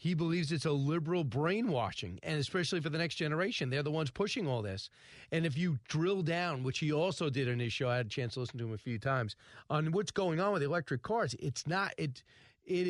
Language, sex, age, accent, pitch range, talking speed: English, male, 40-59, American, 135-185 Hz, 240 wpm